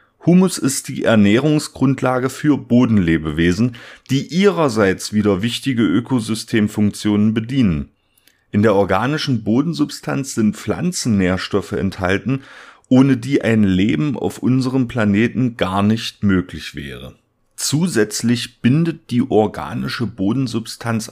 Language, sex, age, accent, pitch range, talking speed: German, male, 40-59, German, 95-125 Hz, 100 wpm